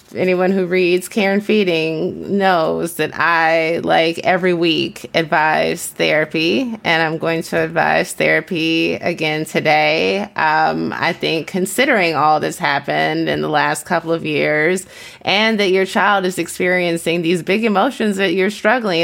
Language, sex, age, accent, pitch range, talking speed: English, female, 20-39, American, 155-185 Hz, 145 wpm